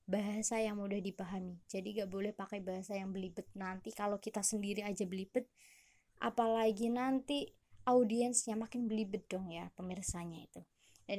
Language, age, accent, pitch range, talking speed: Indonesian, 20-39, native, 190-220 Hz, 145 wpm